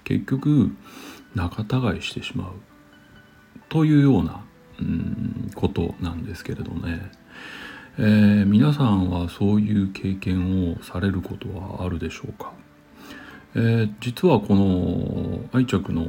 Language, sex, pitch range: Japanese, male, 90-120 Hz